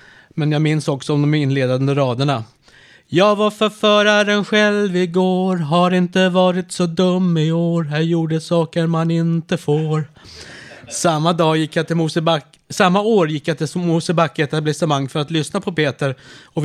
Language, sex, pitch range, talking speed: Swedish, male, 135-170 Hz, 160 wpm